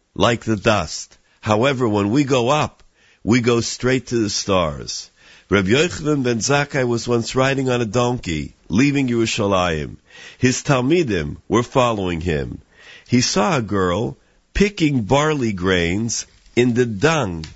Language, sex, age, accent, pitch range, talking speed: English, male, 50-69, American, 100-130 Hz, 140 wpm